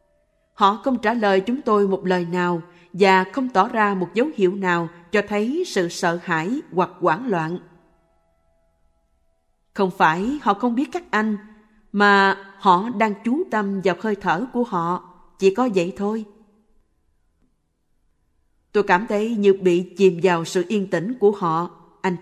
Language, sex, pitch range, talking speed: Vietnamese, female, 175-215 Hz, 160 wpm